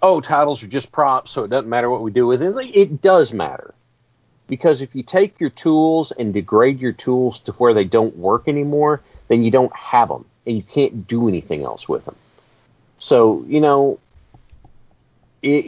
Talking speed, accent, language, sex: 190 wpm, American, English, male